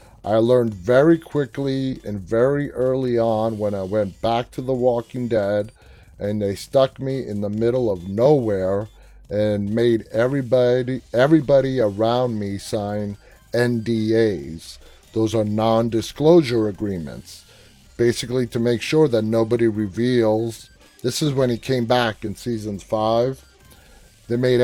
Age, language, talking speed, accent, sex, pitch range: 30-49, English, 135 wpm, American, male, 105-130 Hz